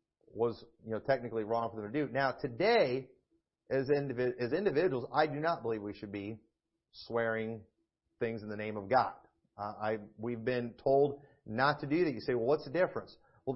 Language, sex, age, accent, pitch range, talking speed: English, male, 40-59, American, 115-150 Hz, 200 wpm